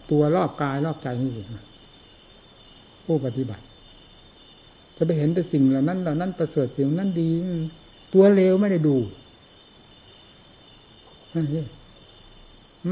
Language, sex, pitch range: Thai, male, 125-150 Hz